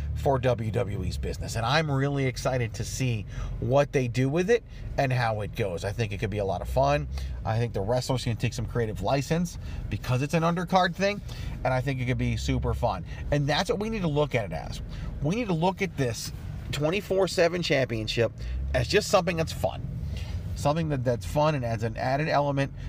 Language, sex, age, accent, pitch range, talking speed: English, male, 40-59, American, 100-140 Hz, 210 wpm